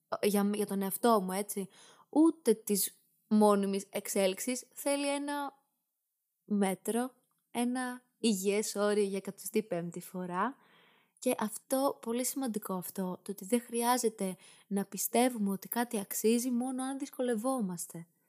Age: 20-39